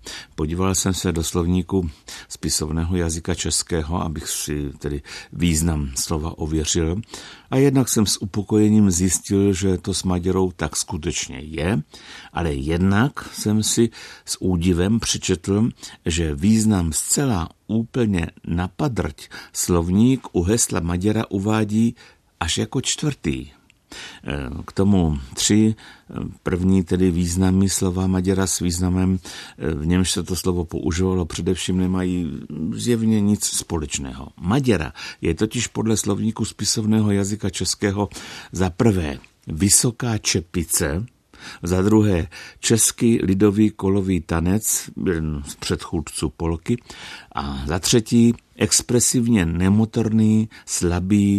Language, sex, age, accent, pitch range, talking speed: Czech, male, 60-79, native, 85-110 Hz, 110 wpm